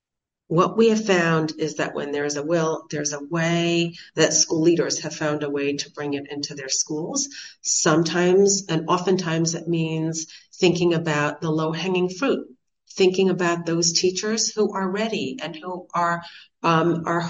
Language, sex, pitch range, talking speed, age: English, female, 145-180 Hz, 175 wpm, 40-59